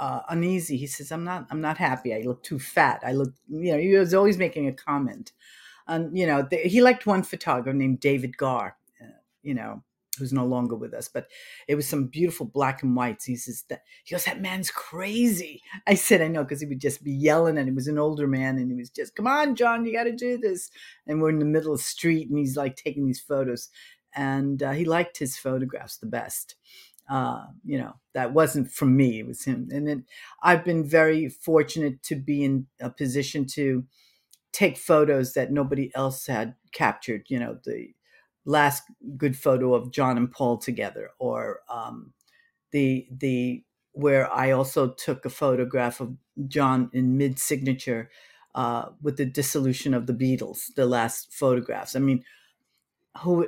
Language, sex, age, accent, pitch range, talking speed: English, female, 50-69, American, 130-165 Hz, 200 wpm